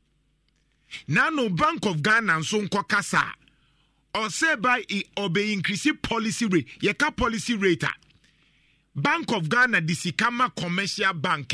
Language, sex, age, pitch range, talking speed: English, male, 50-69, 155-225 Hz, 125 wpm